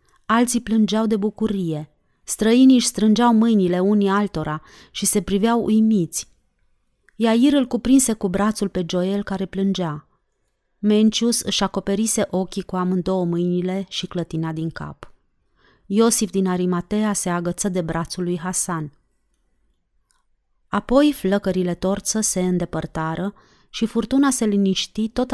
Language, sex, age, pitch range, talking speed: Romanian, female, 30-49, 180-225 Hz, 125 wpm